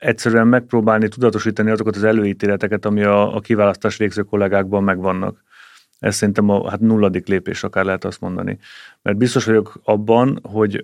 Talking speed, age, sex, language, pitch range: 155 wpm, 30-49, male, Hungarian, 100-110 Hz